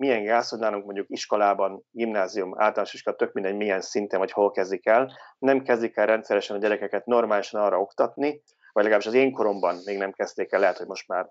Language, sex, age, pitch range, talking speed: Hungarian, male, 30-49, 100-135 Hz, 200 wpm